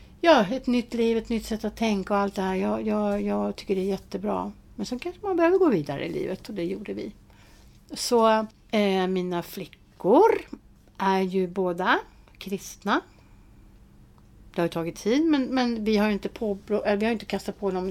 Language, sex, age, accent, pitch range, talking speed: Swedish, female, 60-79, native, 185-245 Hz, 200 wpm